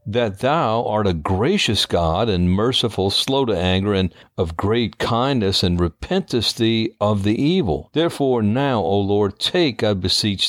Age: 60-79